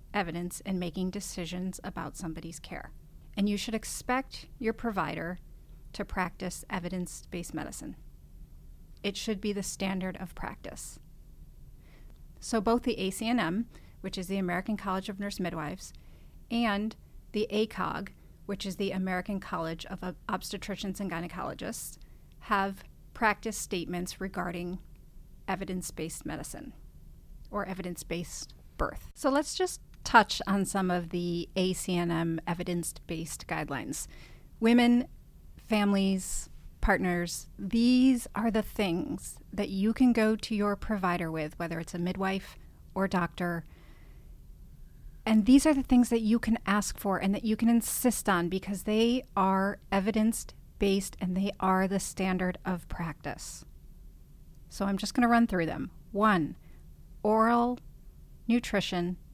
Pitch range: 175-215 Hz